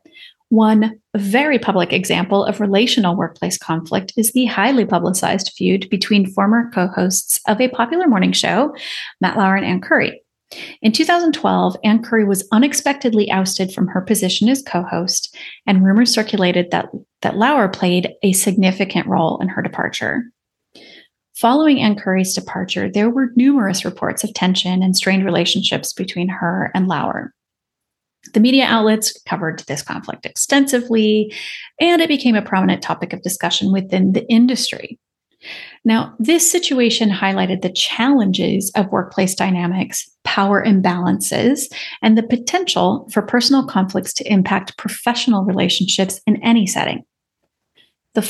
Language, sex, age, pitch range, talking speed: English, female, 30-49, 185-235 Hz, 140 wpm